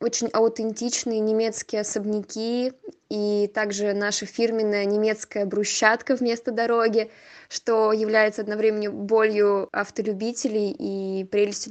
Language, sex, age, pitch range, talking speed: Russian, female, 20-39, 200-220 Hz, 95 wpm